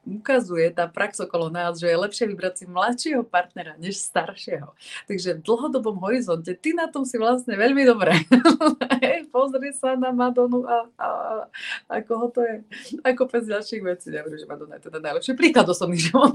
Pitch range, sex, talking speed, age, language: 165-230 Hz, female, 185 wpm, 30-49, Slovak